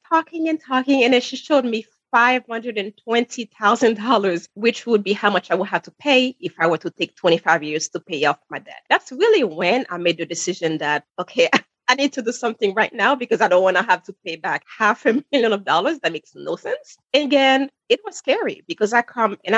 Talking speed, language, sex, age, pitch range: 225 wpm, English, female, 30-49, 170-265 Hz